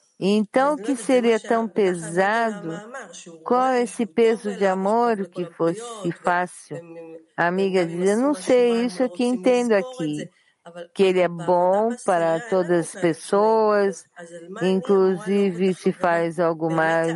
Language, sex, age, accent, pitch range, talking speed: English, female, 50-69, Brazilian, 165-205 Hz, 135 wpm